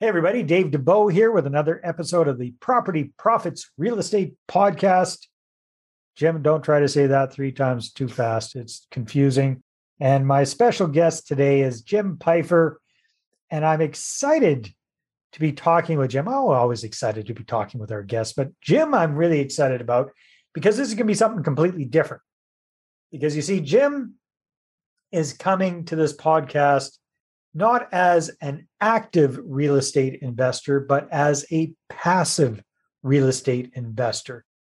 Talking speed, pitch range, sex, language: 155 wpm, 135-170 Hz, male, English